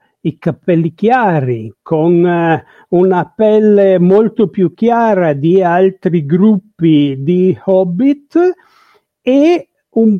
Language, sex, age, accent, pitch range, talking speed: Italian, male, 60-79, native, 170-265 Hz, 95 wpm